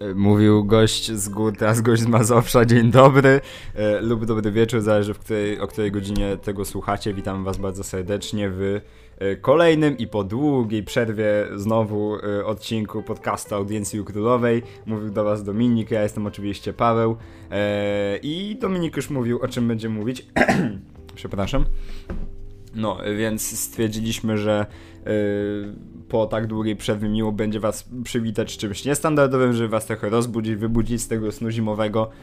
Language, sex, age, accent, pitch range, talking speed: Polish, male, 20-39, native, 100-120 Hz, 150 wpm